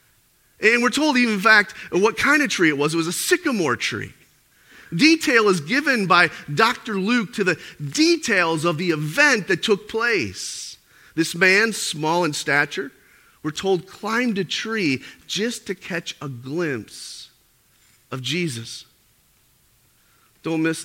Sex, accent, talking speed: male, American, 145 wpm